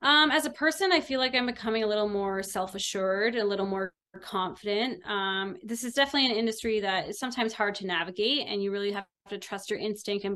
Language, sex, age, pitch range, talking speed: English, female, 20-39, 190-230 Hz, 220 wpm